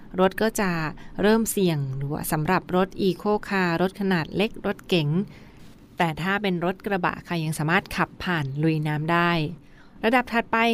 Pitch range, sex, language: 170-195 Hz, female, Thai